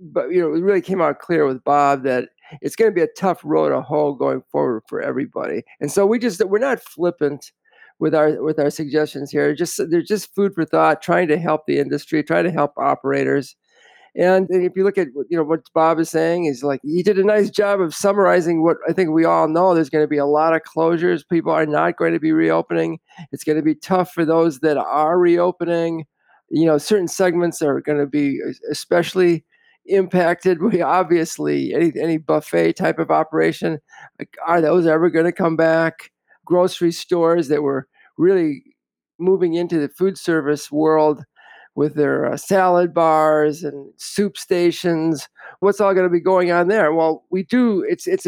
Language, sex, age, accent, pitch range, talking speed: English, male, 50-69, American, 150-185 Hz, 195 wpm